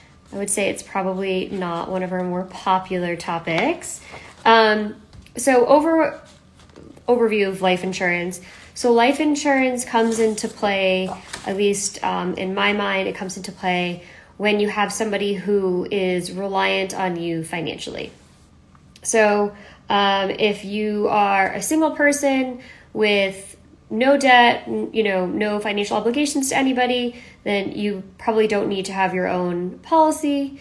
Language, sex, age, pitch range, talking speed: English, female, 20-39, 185-225 Hz, 145 wpm